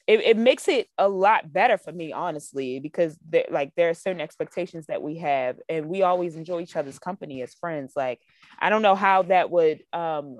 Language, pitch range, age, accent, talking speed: English, 155-200 Hz, 20-39, American, 210 wpm